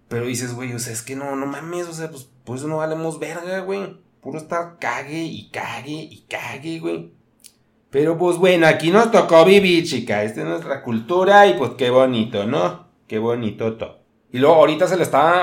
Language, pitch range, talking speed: Spanish, 115-160 Hz, 200 wpm